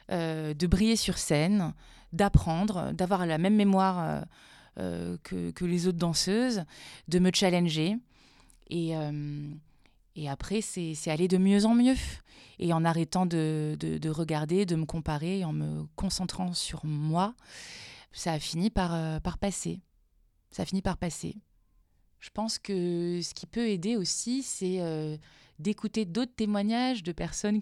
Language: French